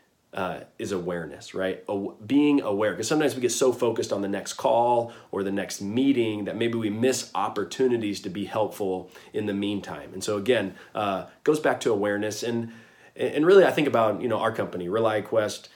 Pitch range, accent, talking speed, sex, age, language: 100-130 Hz, American, 195 wpm, male, 30-49, English